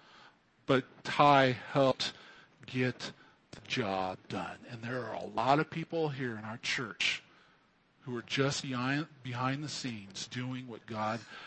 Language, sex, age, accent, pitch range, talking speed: English, male, 50-69, American, 120-150 Hz, 140 wpm